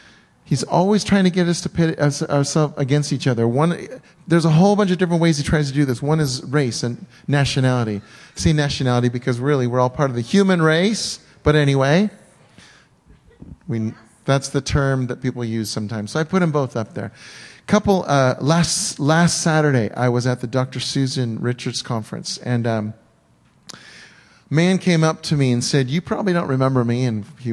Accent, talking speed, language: American, 185 wpm, English